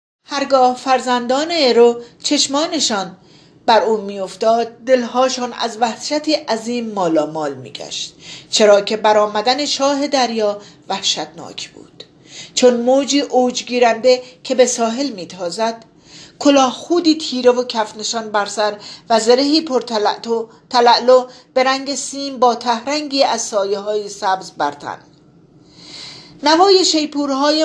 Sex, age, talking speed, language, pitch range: female, 40-59, 105 wpm, Persian, 205-265 Hz